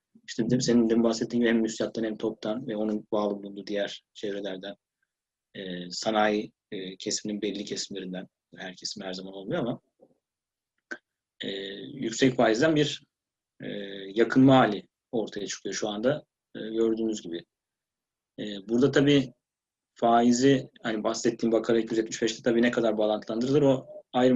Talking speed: 115 wpm